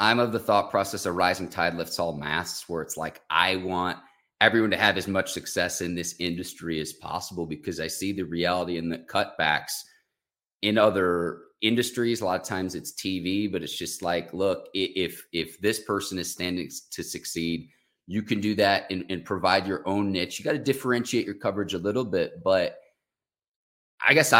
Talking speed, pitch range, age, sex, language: 195 wpm, 90-110 Hz, 30-49, male, English